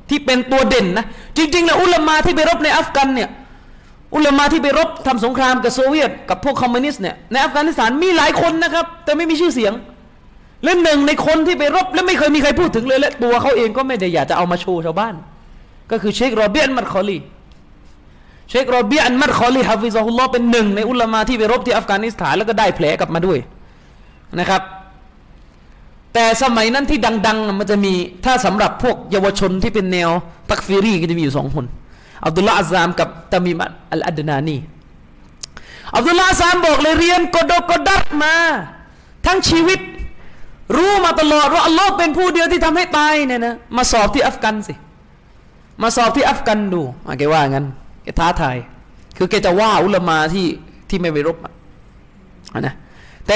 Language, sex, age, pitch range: Thai, male, 20-39, 185-300 Hz